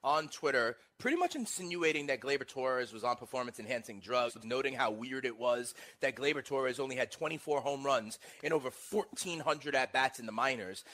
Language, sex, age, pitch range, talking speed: English, male, 30-49, 130-200 Hz, 180 wpm